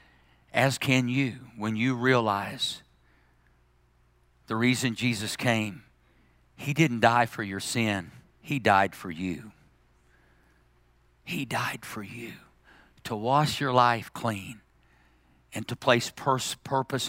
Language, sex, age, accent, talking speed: English, male, 50-69, American, 120 wpm